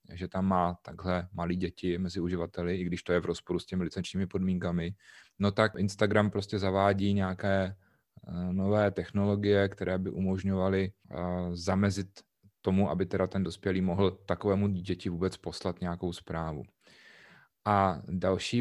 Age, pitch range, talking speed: 30-49, 95-110 Hz, 140 wpm